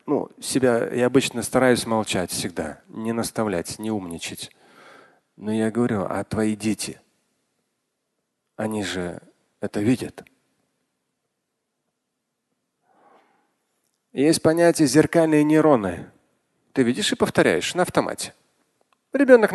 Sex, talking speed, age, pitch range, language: male, 95 wpm, 30-49, 110-170 Hz, Russian